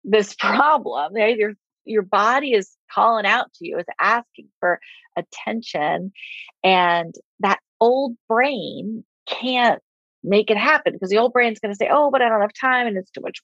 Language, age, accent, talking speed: English, 40-59, American, 185 wpm